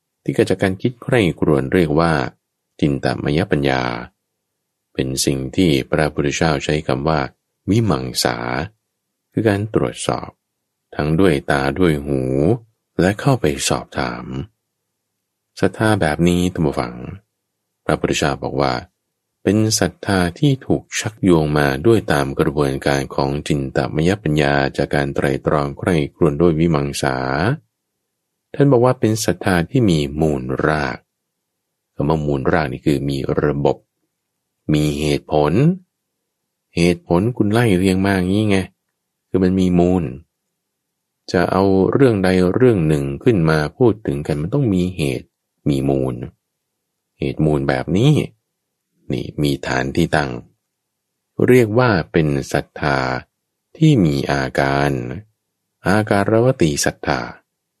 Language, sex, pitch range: English, male, 70-100 Hz